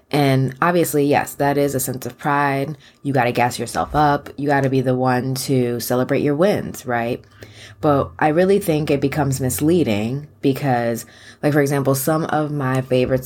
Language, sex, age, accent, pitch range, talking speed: English, female, 20-39, American, 120-145 Hz, 185 wpm